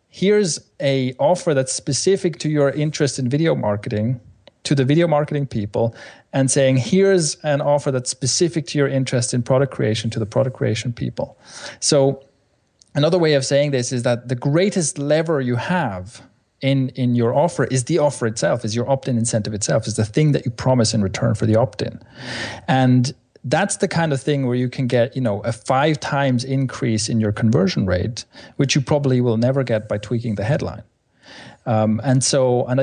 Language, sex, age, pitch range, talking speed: English, male, 30-49, 115-150 Hz, 190 wpm